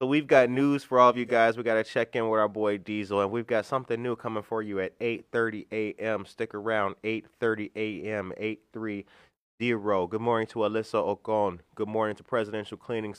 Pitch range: 100-120 Hz